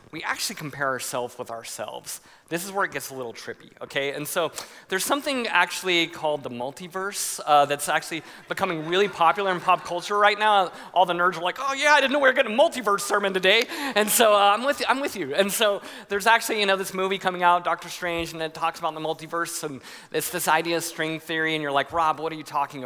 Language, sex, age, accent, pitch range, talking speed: English, male, 30-49, American, 145-190 Hz, 240 wpm